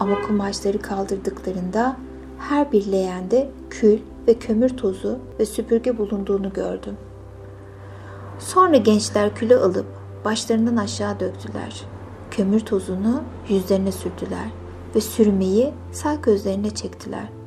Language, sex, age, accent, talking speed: Turkish, female, 60-79, native, 105 wpm